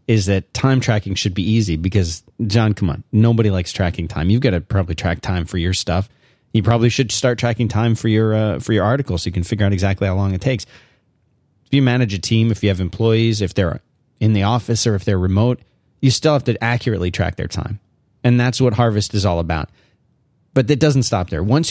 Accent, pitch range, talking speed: American, 95-120 Hz, 235 wpm